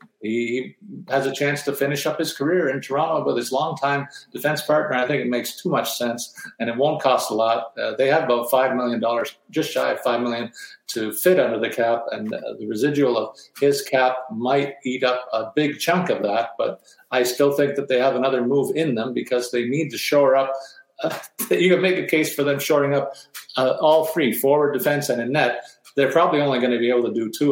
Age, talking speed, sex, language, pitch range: 50-69, 230 wpm, male, English, 125-145 Hz